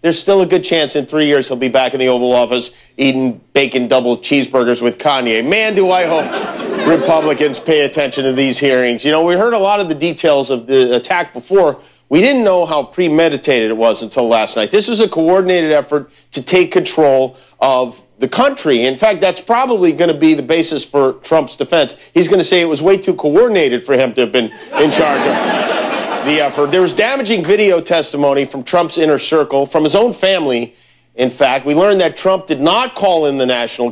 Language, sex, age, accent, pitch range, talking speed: English, male, 50-69, American, 130-175 Hz, 210 wpm